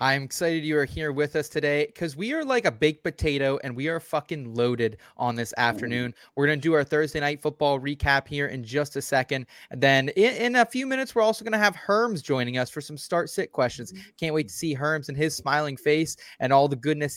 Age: 20-39